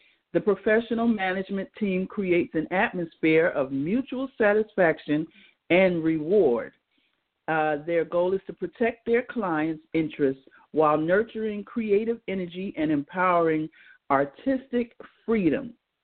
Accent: American